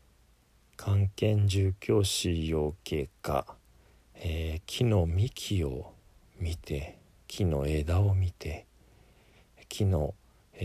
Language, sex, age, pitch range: Japanese, male, 40-59, 80-105 Hz